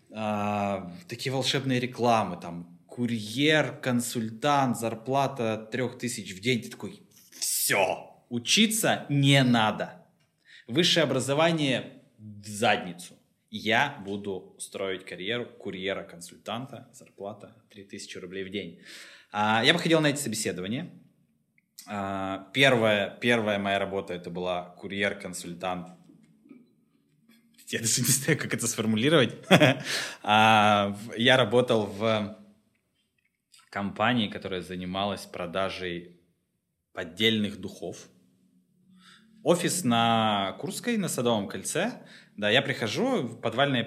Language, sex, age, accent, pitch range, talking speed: Russian, male, 20-39, native, 100-130 Hz, 100 wpm